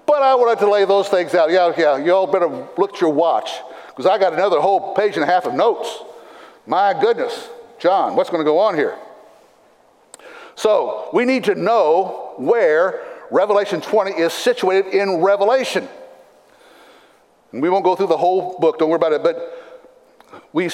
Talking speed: 180 wpm